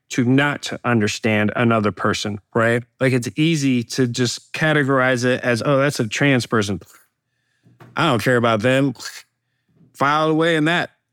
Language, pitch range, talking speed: English, 120-145 Hz, 150 wpm